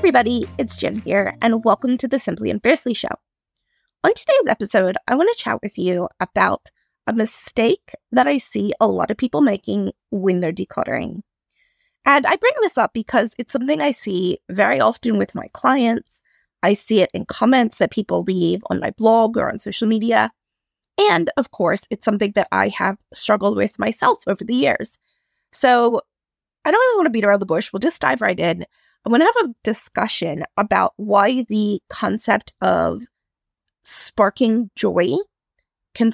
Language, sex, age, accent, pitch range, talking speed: English, female, 20-39, American, 205-275 Hz, 180 wpm